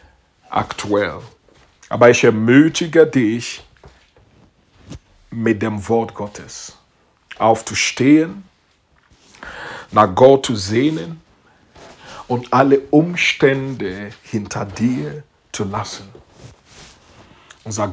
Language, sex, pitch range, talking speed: English, male, 115-140 Hz, 75 wpm